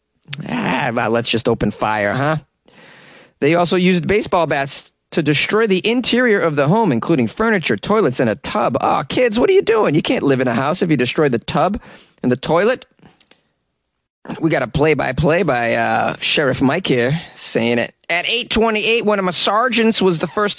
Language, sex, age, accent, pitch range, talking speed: English, male, 30-49, American, 155-220 Hz, 190 wpm